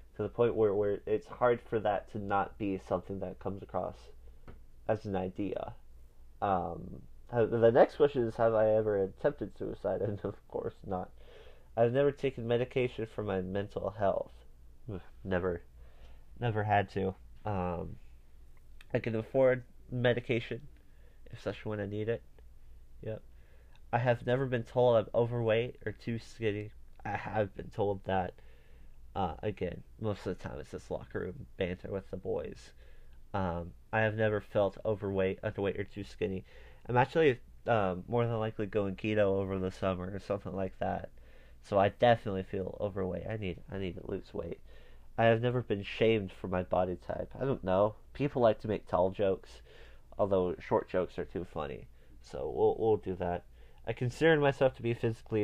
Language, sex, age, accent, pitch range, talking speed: English, male, 30-49, American, 90-115 Hz, 170 wpm